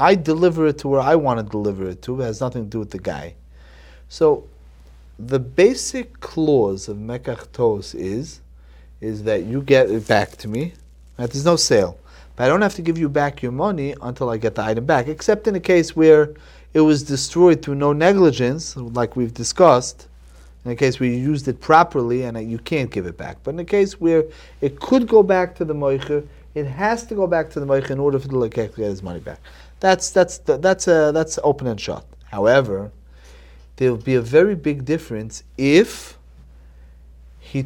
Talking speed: 205 wpm